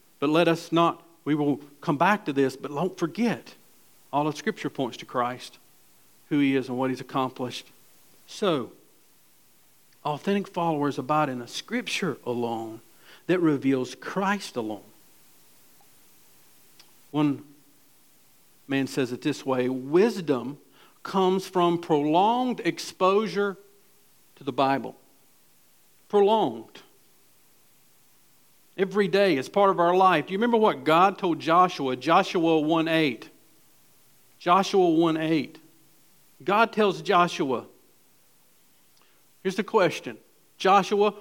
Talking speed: 115 wpm